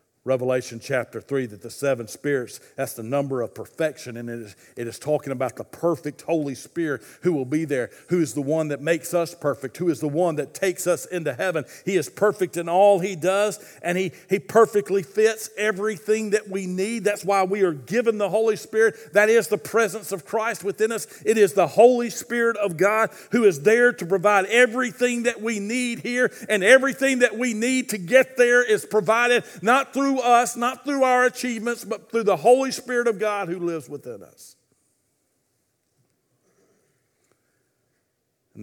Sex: male